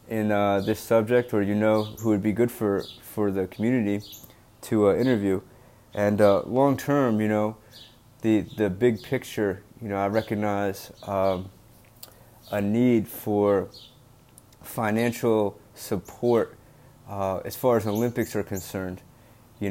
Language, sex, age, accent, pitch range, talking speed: English, male, 30-49, American, 100-120 Hz, 140 wpm